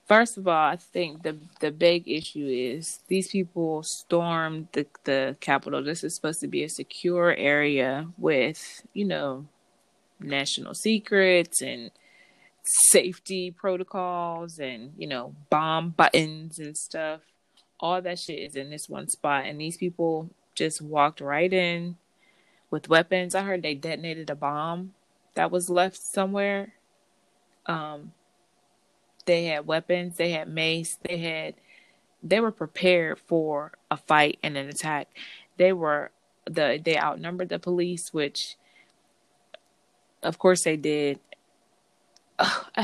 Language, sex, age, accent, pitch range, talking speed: English, female, 20-39, American, 155-190 Hz, 135 wpm